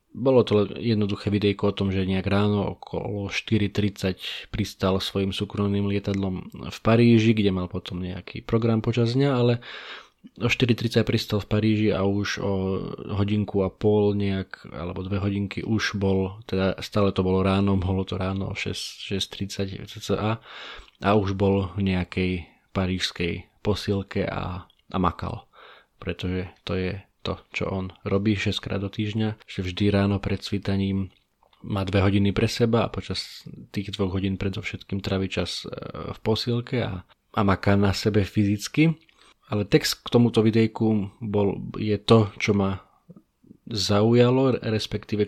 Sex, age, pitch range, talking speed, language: male, 20-39, 95-110 Hz, 145 wpm, Slovak